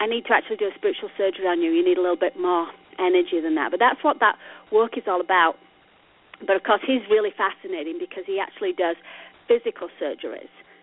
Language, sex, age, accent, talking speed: English, female, 30-49, British, 215 wpm